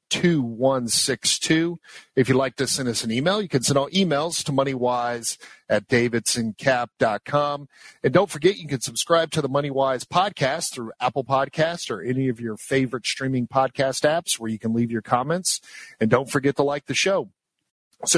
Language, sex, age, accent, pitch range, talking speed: English, male, 50-69, American, 125-145 Hz, 185 wpm